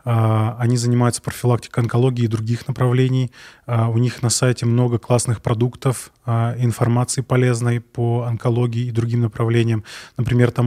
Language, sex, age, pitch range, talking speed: Russian, male, 20-39, 115-125 Hz, 130 wpm